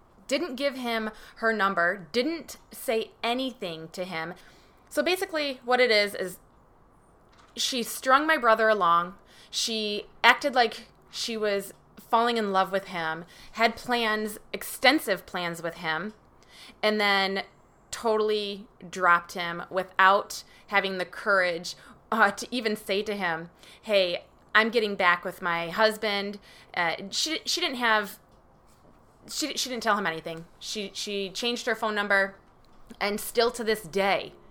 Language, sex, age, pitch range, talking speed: English, female, 20-39, 185-230 Hz, 140 wpm